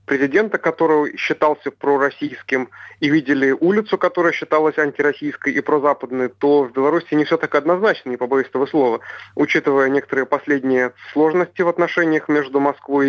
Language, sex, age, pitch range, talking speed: Russian, male, 30-49, 125-145 Hz, 140 wpm